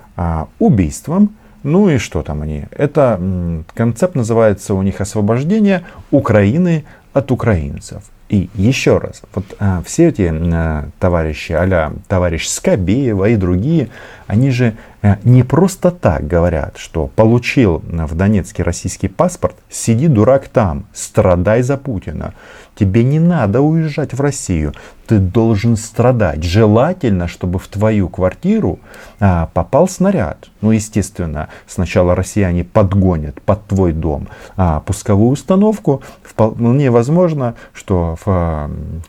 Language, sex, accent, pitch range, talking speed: Russian, male, native, 90-125 Hz, 115 wpm